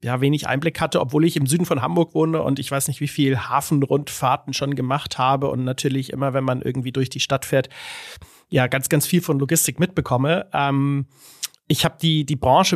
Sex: male